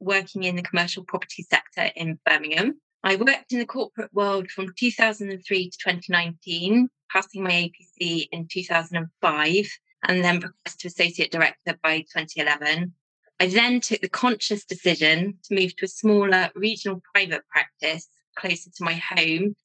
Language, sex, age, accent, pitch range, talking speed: English, female, 20-39, British, 170-200 Hz, 150 wpm